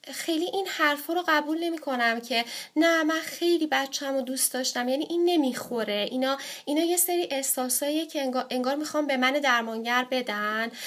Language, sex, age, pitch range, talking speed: Persian, female, 10-29, 245-310 Hz, 165 wpm